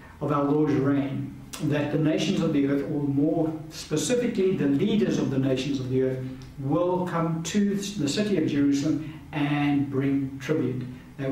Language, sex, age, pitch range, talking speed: English, male, 60-79, 135-160 Hz, 170 wpm